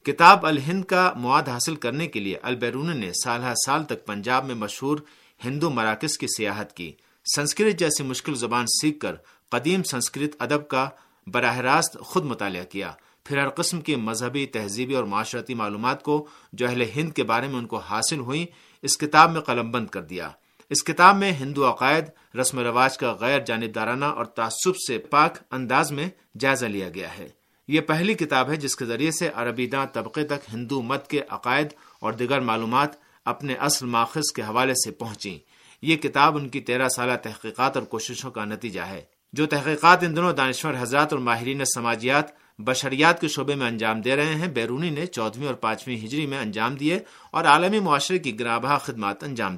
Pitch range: 115-150 Hz